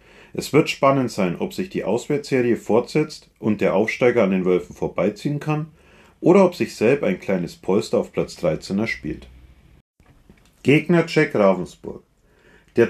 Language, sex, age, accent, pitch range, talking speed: German, male, 40-59, German, 110-155 Hz, 150 wpm